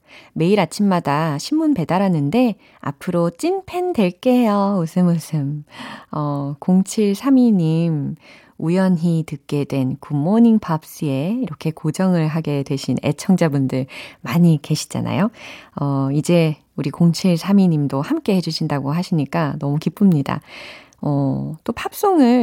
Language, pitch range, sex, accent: Korean, 160-240 Hz, female, native